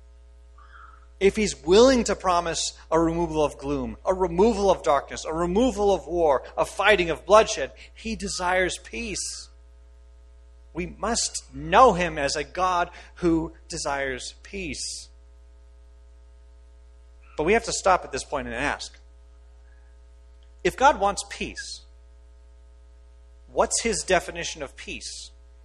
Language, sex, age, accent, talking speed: English, male, 40-59, American, 125 wpm